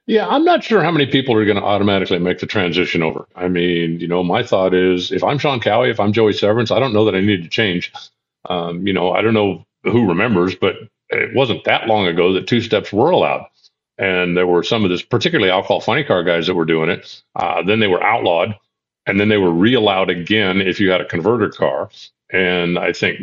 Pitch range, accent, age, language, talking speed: 90-110 Hz, American, 40-59, English, 240 wpm